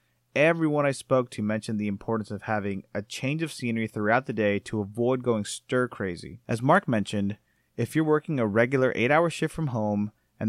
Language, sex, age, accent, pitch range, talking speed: English, male, 30-49, American, 105-140 Hz, 190 wpm